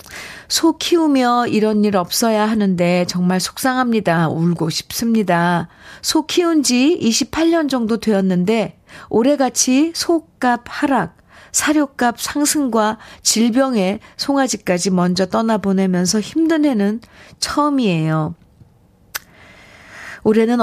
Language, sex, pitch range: Korean, female, 185-245 Hz